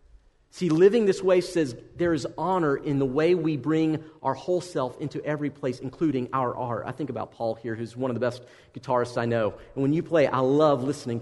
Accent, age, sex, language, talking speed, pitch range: American, 40-59, male, English, 225 wpm, 125-170 Hz